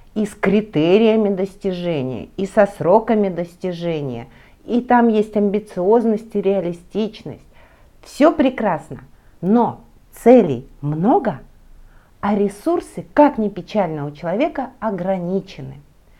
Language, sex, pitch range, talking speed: Russian, female, 195-270 Hz, 95 wpm